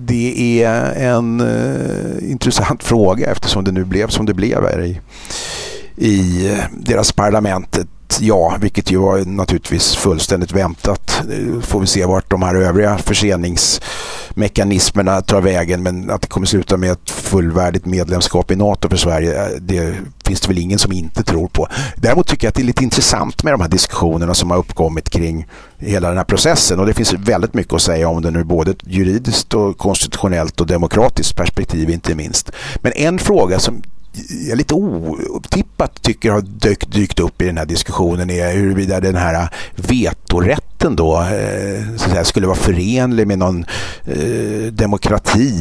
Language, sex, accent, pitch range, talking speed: Swedish, male, native, 85-105 Hz, 170 wpm